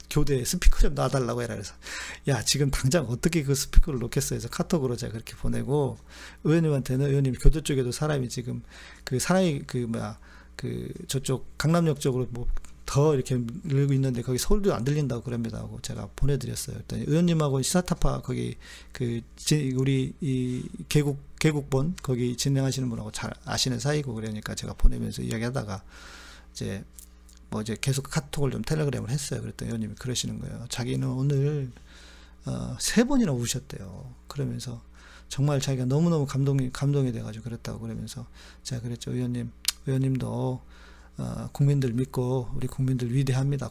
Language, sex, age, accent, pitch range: Korean, male, 40-59, native, 115-140 Hz